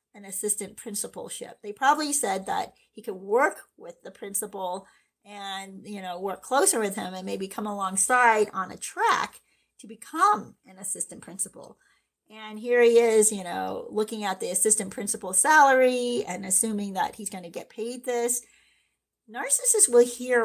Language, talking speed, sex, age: English, 165 wpm, female, 40-59